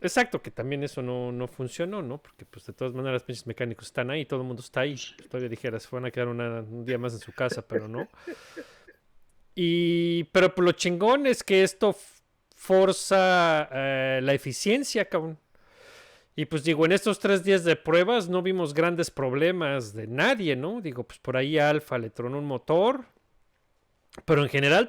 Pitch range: 125-170 Hz